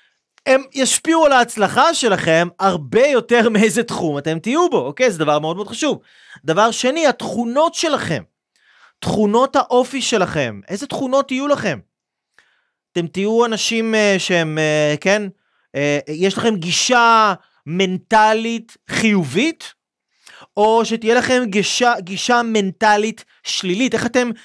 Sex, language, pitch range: male, Hebrew, 180-255 Hz